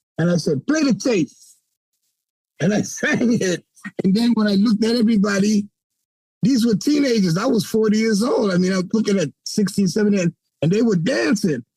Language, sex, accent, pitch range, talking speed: English, male, American, 150-220 Hz, 195 wpm